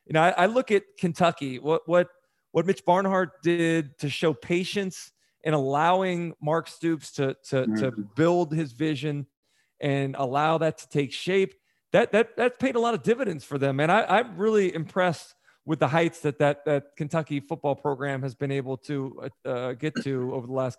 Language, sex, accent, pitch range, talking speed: English, male, American, 145-180 Hz, 190 wpm